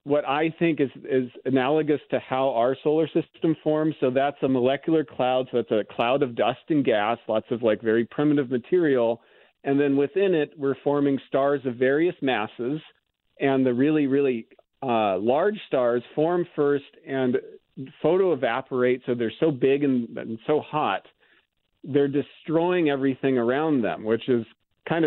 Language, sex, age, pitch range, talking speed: English, male, 40-59, 120-145 Hz, 165 wpm